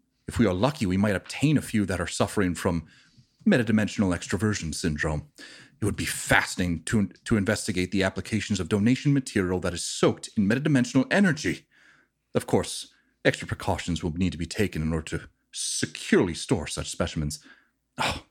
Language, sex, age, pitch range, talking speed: English, male, 30-49, 90-135 Hz, 165 wpm